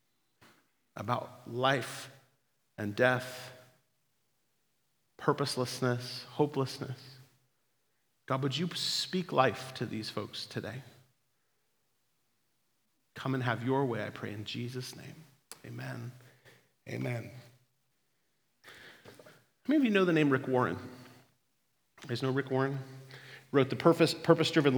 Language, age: English, 40-59